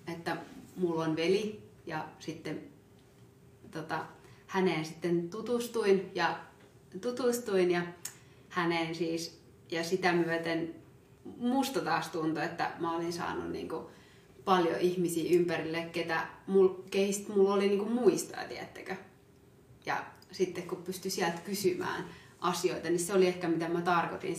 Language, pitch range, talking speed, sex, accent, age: Finnish, 165-190 Hz, 130 wpm, female, native, 30-49